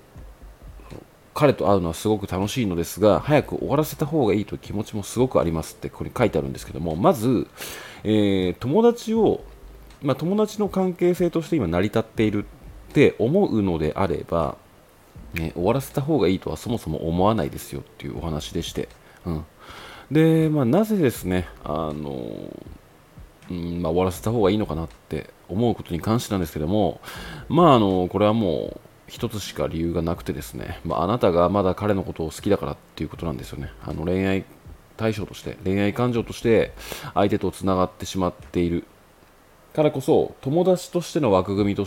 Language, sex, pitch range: Japanese, male, 85-115 Hz